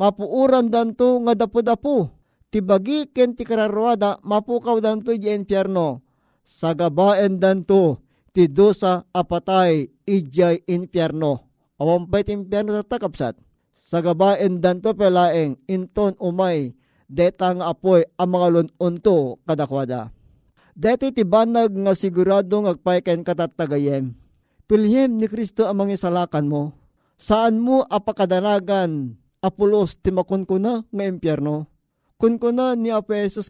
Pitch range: 165-205 Hz